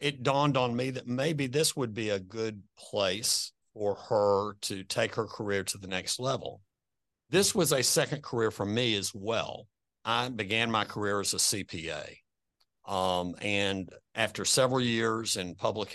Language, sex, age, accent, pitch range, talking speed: English, male, 50-69, American, 95-115 Hz, 170 wpm